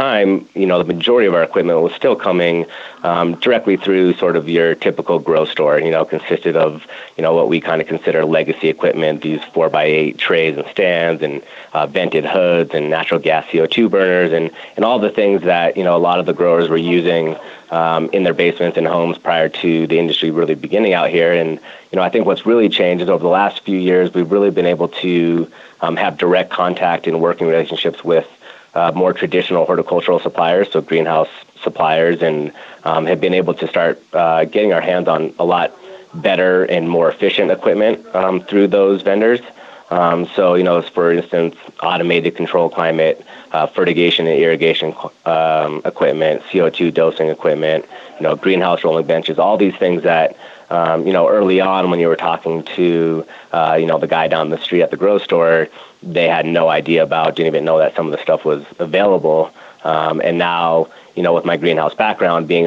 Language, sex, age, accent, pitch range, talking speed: English, male, 30-49, American, 80-90 Hz, 200 wpm